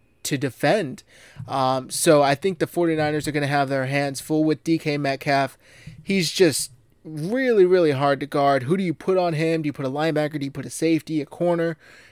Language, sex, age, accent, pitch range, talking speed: English, male, 20-39, American, 135-155 Hz, 215 wpm